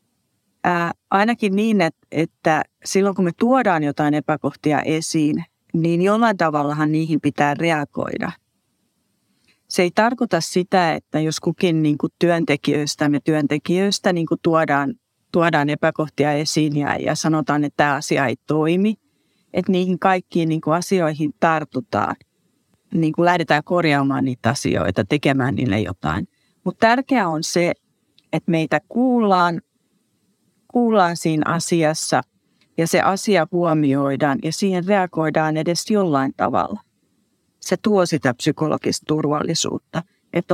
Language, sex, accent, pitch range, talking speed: Finnish, female, native, 145-180 Hz, 110 wpm